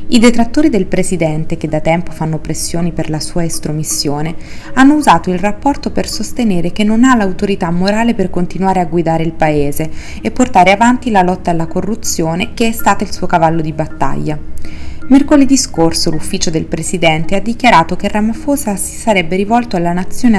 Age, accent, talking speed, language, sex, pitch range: 30-49, native, 175 wpm, Italian, female, 165-210 Hz